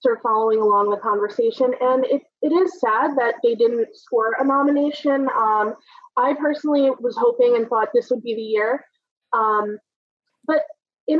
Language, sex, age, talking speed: English, female, 20-39, 170 wpm